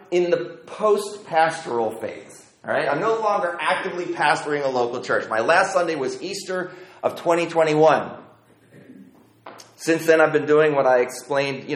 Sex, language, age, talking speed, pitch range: male, English, 30-49, 160 wpm, 125-170 Hz